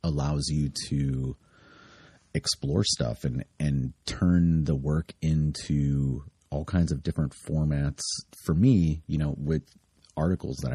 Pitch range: 70-85 Hz